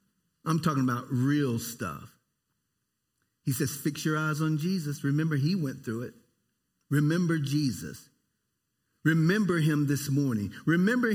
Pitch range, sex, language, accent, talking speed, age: 120-160 Hz, male, English, American, 130 wpm, 50-69